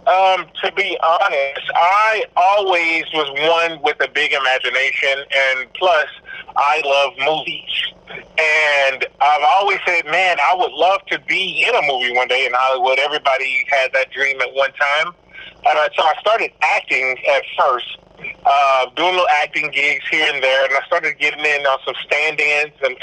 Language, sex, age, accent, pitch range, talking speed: English, male, 30-49, American, 140-185 Hz, 170 wpm